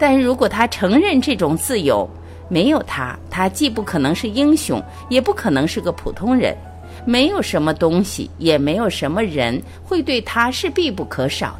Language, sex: Chinese, female